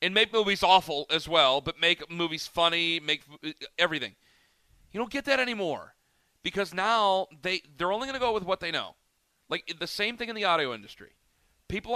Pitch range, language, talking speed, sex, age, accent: 155-200 Hz, English, 195 wpm, male, 40-59, American